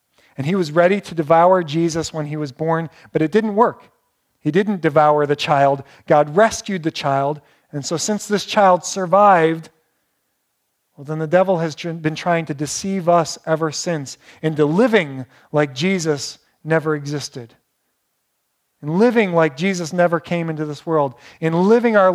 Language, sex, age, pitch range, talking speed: English, male, 40-59, 145-190 Hz, 165 wpm